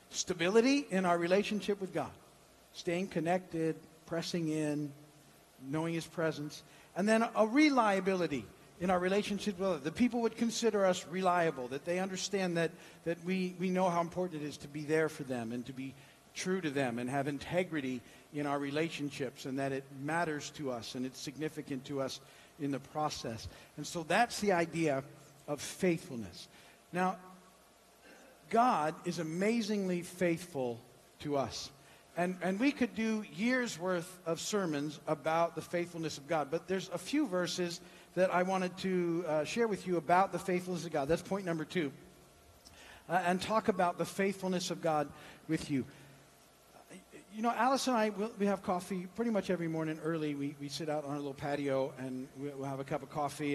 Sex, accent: male, American